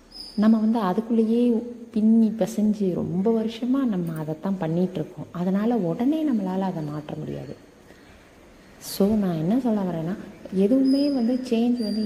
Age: 30-49